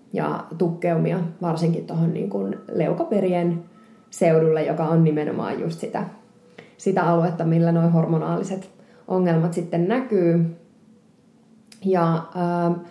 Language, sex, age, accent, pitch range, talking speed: Finnish, female, 20-39, native, 165-215 Hz, 100 wpm